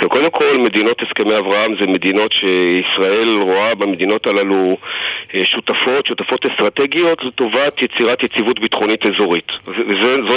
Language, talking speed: Hebrew, 115 wpm